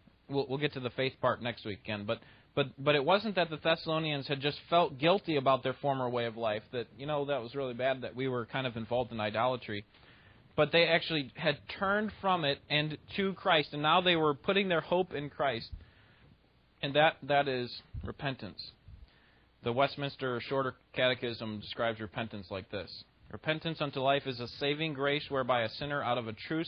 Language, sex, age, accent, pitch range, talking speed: English, male, 30-49, American, 110-145 Hz, 195 wpm